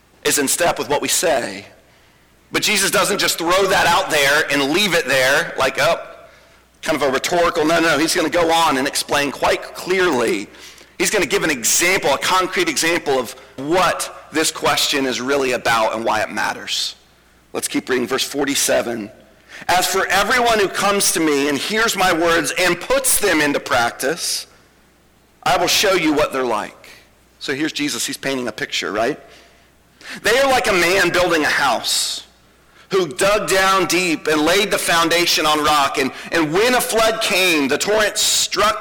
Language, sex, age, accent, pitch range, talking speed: English, male, 40-59, American, 125-195 Hz, 185 wpm